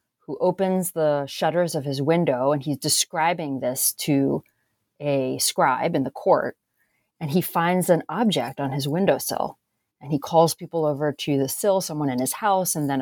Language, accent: English, American